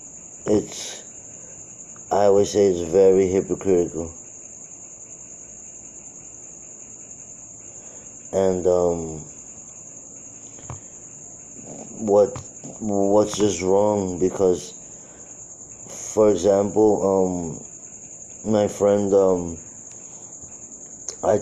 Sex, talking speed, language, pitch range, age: male, 60 wpm, English, 90-105 Hz, 30-49